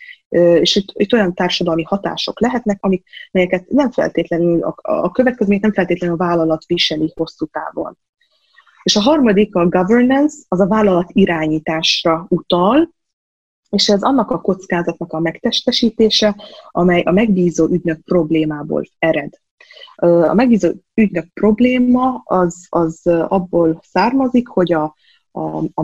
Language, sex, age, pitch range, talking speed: Hungarian, female, 20-39, 165-220 Hz, 130 wpm